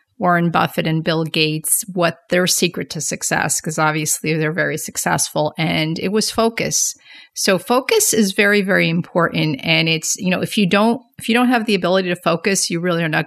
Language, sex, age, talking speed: English, female, 40-59, 200 wpm